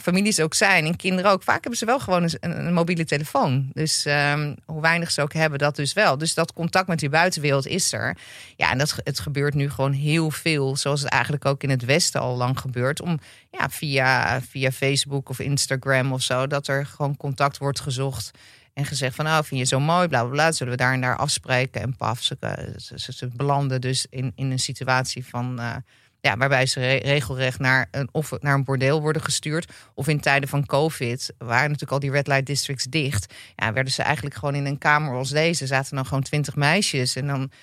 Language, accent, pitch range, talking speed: Dutch, Dutch, 130-155 Hz, 220 wpm